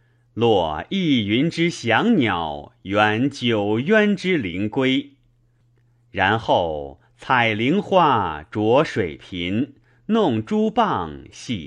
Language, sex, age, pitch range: Chinese, male, 30-49, 110-150 Hz